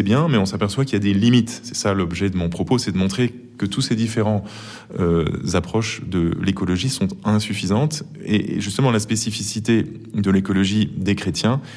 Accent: French